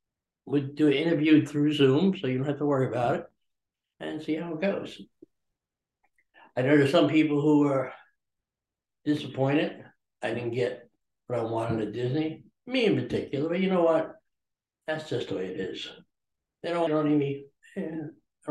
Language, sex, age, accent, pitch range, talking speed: English, male, 60-79, American, 115-155 Hz, 180 wpm